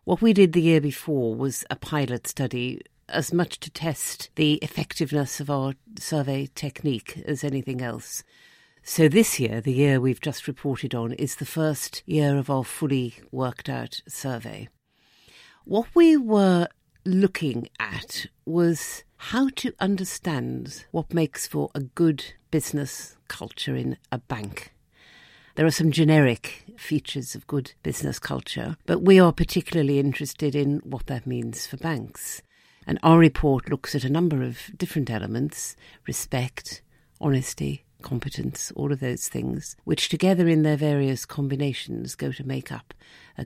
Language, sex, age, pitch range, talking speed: English, female, 50-69, 130-165 Hz, 150 wpm